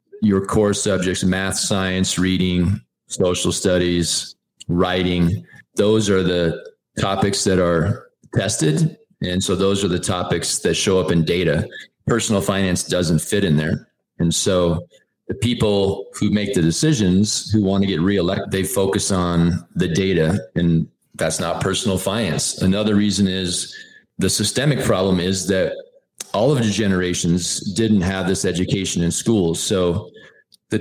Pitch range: 90-105 Hz